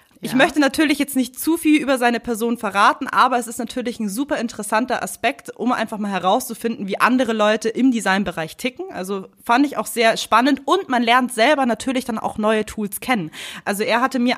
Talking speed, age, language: 205 wpm, 20-39, German